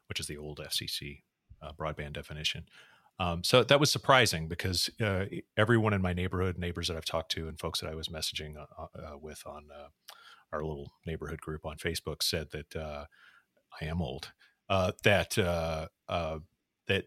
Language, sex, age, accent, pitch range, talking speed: English, male, 30-49, American, 80-95 Hz, 170 wpm